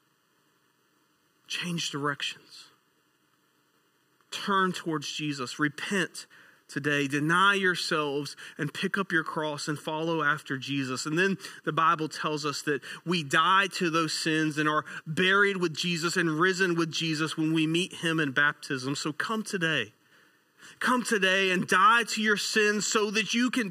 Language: English